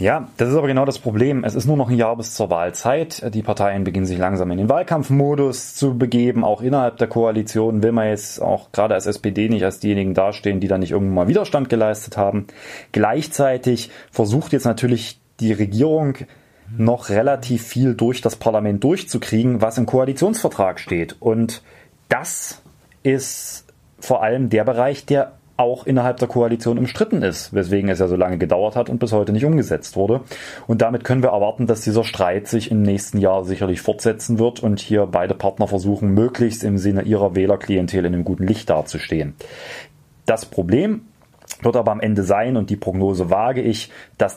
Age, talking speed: 30-49, 185 wpm